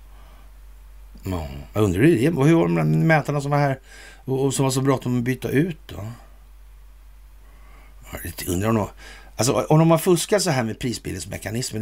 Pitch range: 75-110 Hz